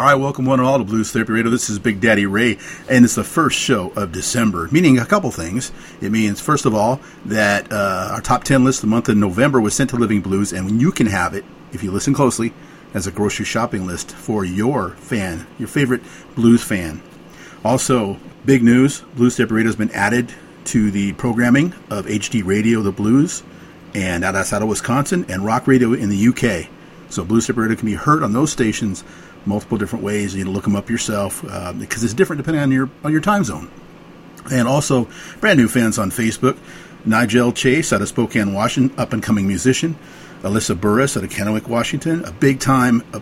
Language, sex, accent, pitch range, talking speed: English, male, American, 105-130 Hz, 210 wpm